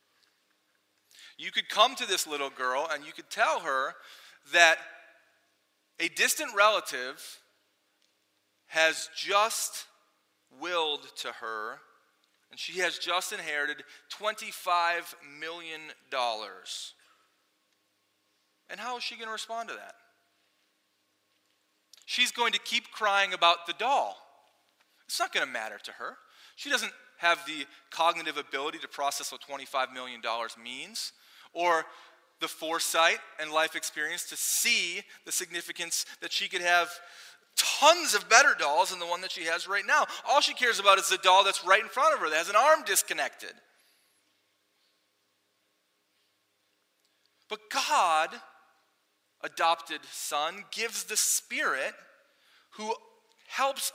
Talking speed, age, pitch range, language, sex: 130 wpm, 30-49, 160-230 Hz, English, male